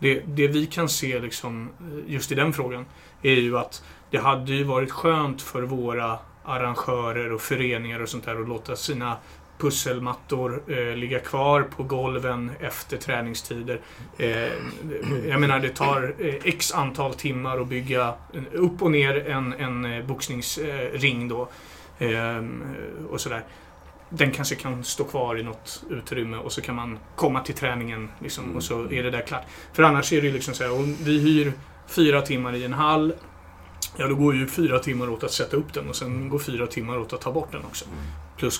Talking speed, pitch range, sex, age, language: 185 wpm, 120-145 Hz, male, 30-49, Swedish